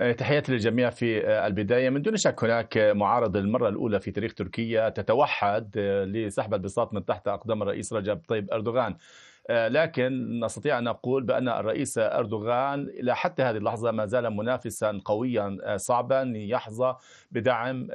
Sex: male